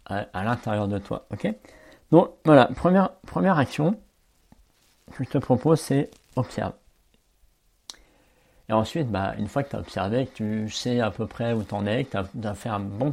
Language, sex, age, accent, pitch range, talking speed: French, male, 50-69, French, 100-120 Hz, 185 wpm